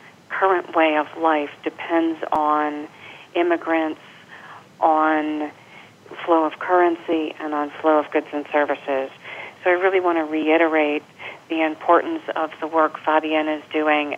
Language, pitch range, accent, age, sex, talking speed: English, 155-170 Hz, American, 40-59, female, 135 wpm